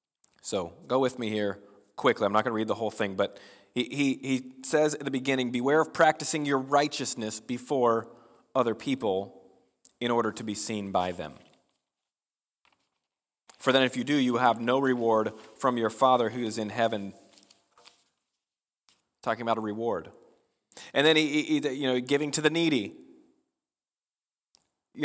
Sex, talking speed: male, 165 wpm